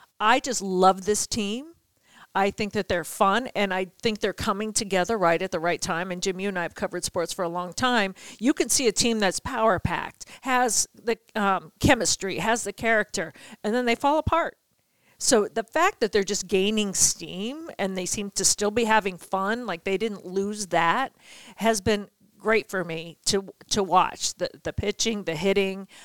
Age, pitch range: 50-69, 185-230 Hz